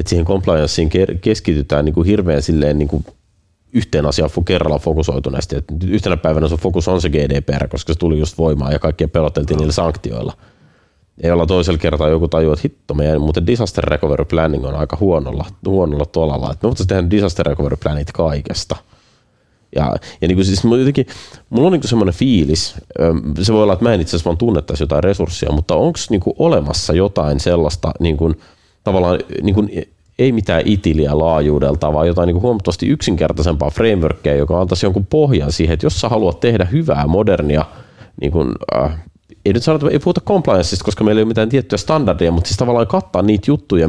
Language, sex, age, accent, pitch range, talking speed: Finnish, male, 30-49, native, 80-100 Hz, 180 wpm